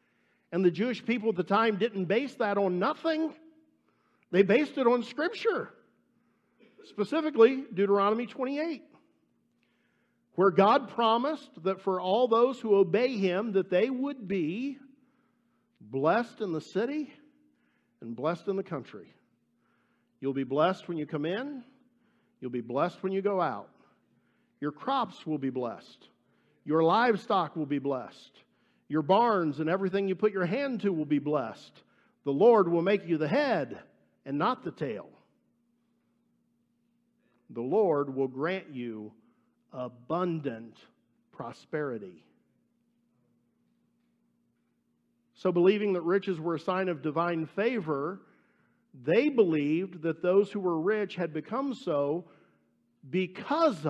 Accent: American